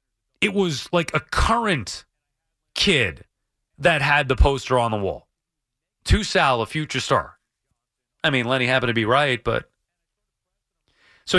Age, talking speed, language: 30-49, 140 wpm, English